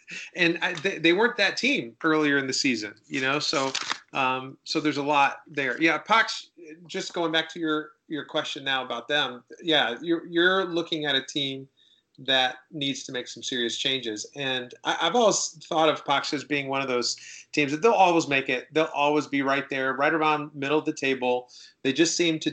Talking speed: 215 wpm